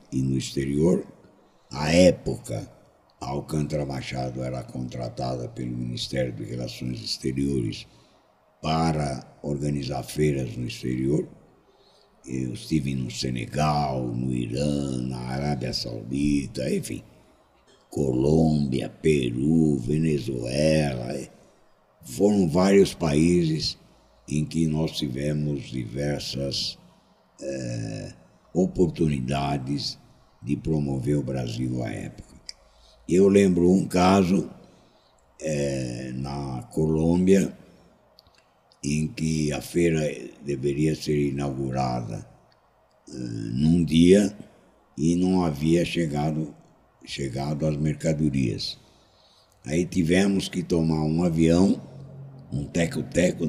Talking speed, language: 90 wpm, Portuguese